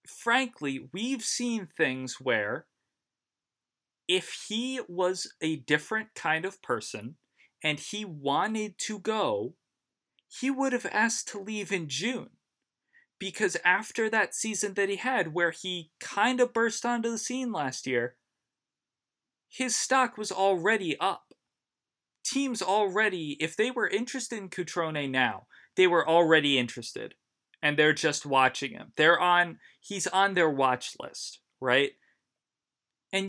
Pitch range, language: 150-225 Hz, English